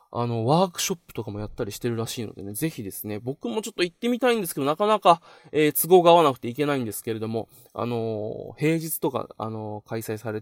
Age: 20-39